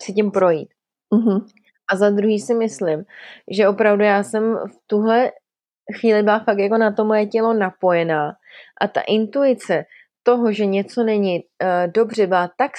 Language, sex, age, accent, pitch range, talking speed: Czech, female, 20-39, native, 200-225 Hz, 165 wpm